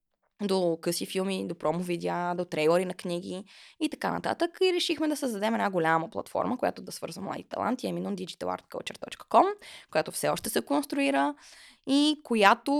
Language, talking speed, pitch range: Bulgarian, 155 wpm, 175-225 Hz